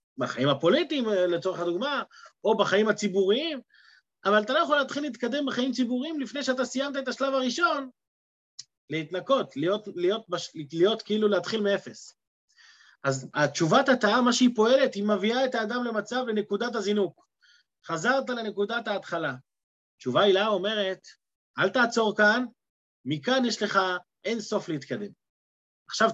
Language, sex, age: Hebrew, male, 30-49